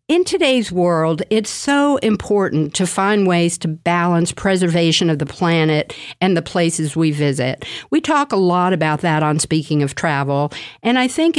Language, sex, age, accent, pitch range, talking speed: English, female, 50-69, American, 160-225 Hz, 175 wpm